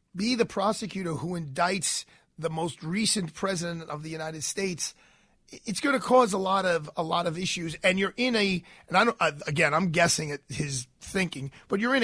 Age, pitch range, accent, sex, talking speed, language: 40-59, 160-210 Hz, American, male, 200 wpm, English